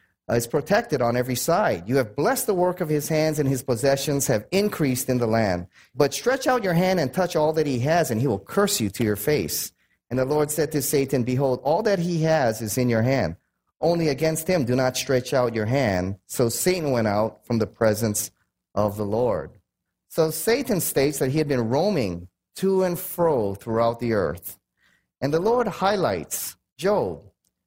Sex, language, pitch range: male, English, 120-165 Hz